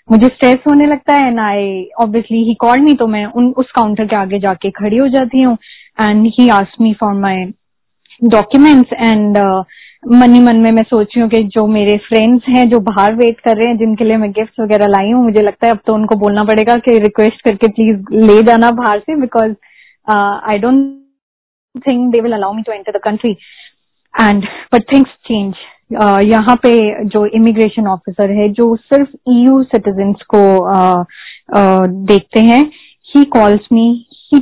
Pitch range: 210-250 Hz